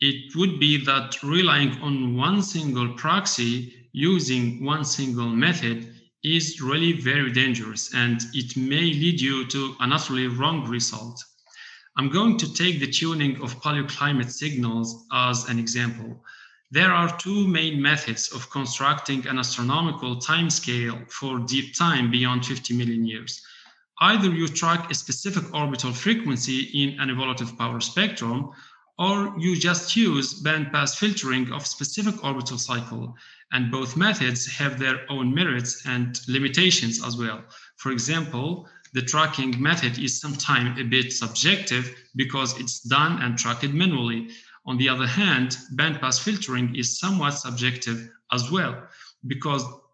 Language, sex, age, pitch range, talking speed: English, male, 40-59, 125-155 Hz, 140 wpm